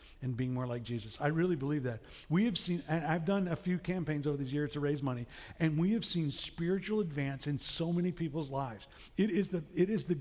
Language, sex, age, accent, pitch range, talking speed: English, male, 50-69, American, 140-175 Hz, 240 wpm